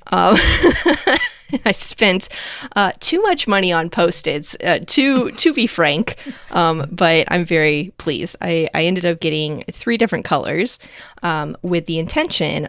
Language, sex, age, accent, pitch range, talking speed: English, female, 10-29, American, 160-195 Hz, 140 wpm